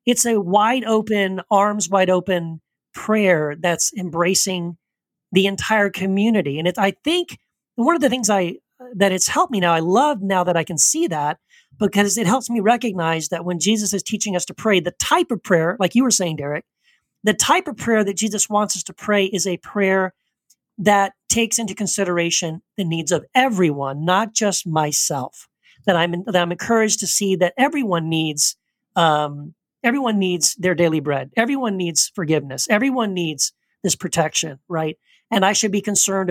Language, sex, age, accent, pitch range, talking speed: English, male, 40-59, American, 165-210 Hz, 180 wpm